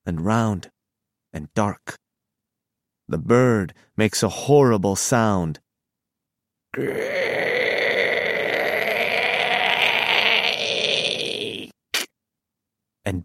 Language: English